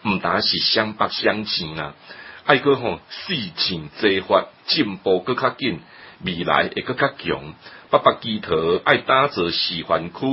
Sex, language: male, Chinese